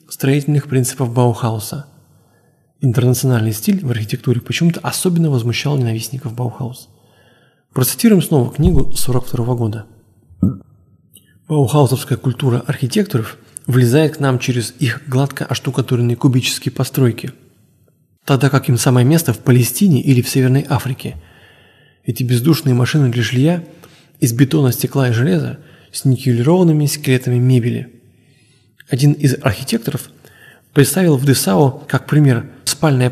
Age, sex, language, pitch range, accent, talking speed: 20-39, male, Russian, 125-150 Hz, native, 115 wpm